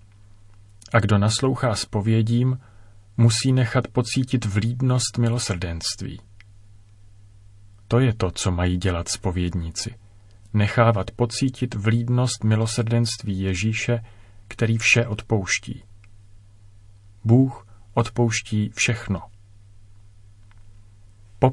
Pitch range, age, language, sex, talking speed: 100-115 Hz, 40-59, Czech, male, 80 wpm